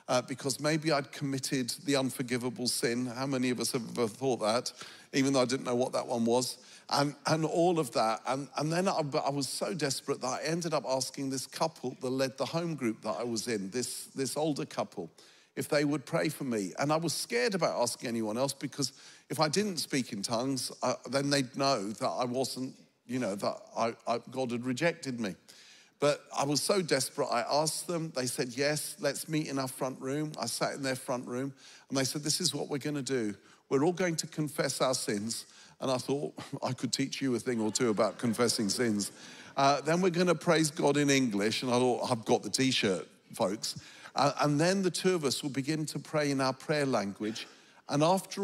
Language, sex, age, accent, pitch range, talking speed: English, male, 50-69, British, 125-155 Hz, 225 wpm